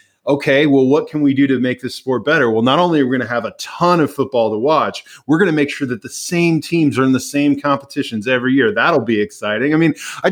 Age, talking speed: 20-39, 275 wpm